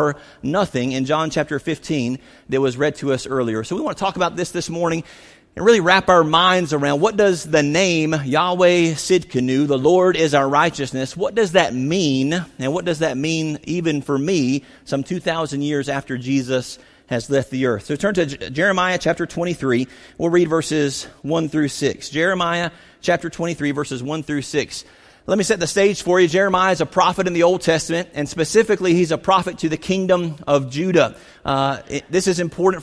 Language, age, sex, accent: English, 40-59, male, American